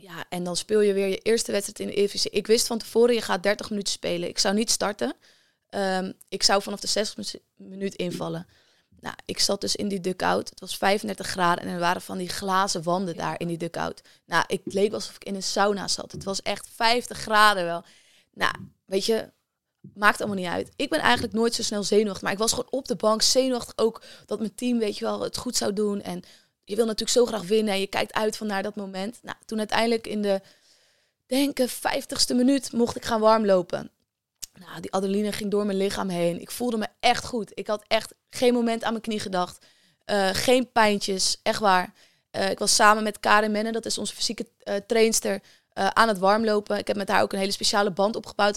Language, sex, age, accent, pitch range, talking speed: Dutch, female, 20-39, Dutch, 195-225 Hz, 225 wpm